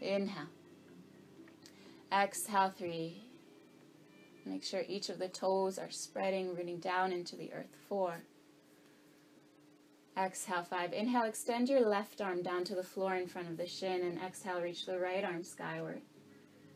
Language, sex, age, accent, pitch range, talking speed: English, female, 20-39, American, 180-205 Hz, 145 wpm